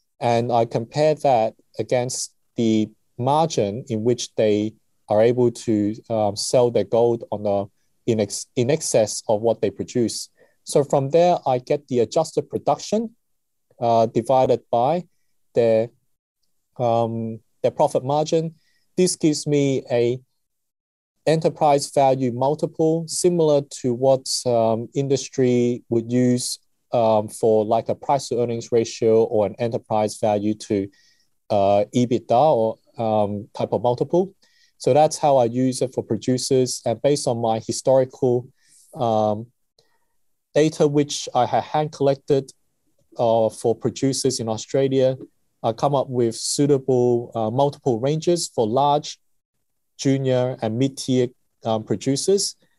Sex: male